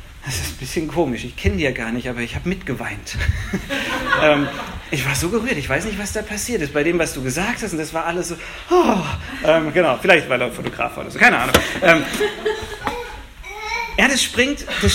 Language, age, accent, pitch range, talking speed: German, 40-59, German, 145-215 Hz, 205 wpm